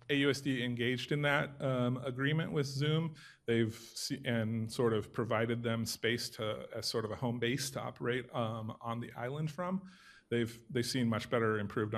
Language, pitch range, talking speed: English, 110-135 Hz, 180 wpm